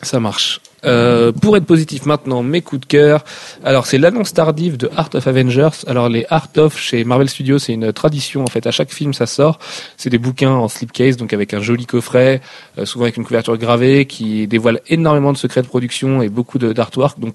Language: French